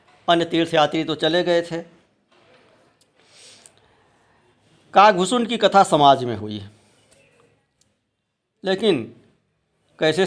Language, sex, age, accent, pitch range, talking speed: Hindi, male, 60-79, native, 115-185 Hz, 90 wpm